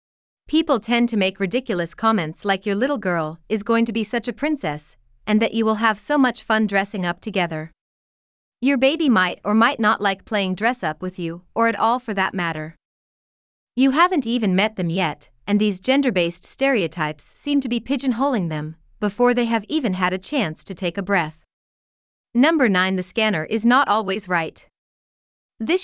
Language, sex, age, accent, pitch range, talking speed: English, female, 30-49, American, 175-240 Hz, 185 wpm